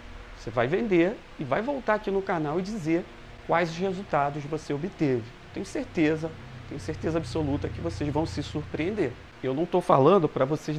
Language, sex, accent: Portuguese, male, Brazilian